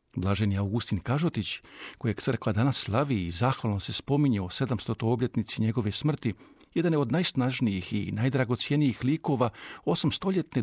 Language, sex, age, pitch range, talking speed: Croatian, male, 50-69, 110-140 Hz, 135 wpm